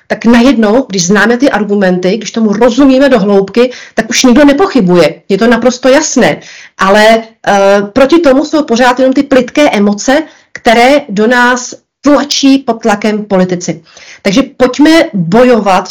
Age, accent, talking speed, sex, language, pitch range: 40-59, native, 145 wpm, female, Czech, 190-260 Hz